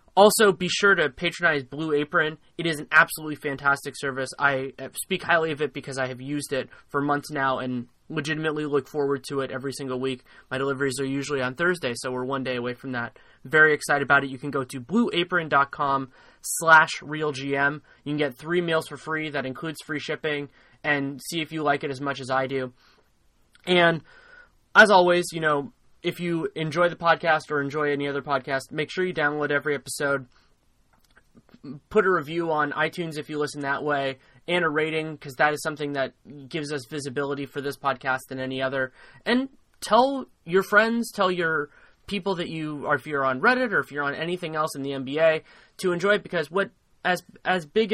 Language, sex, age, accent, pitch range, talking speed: English, male, 20-39, American, 135-165 Hz, 200 wpm